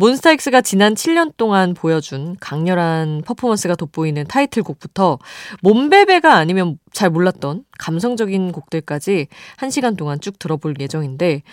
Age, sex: 20-39, female